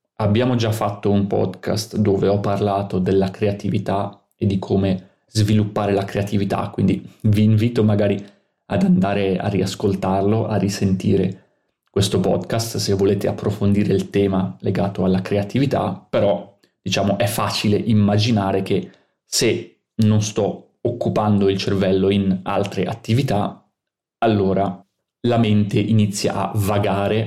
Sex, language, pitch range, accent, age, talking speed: male, Italian, 95-110 Hz, native, 30-49, 125 wpm